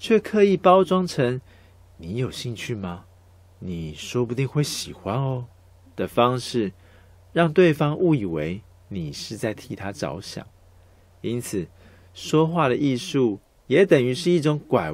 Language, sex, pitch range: Chinese, male, 100-145 Hz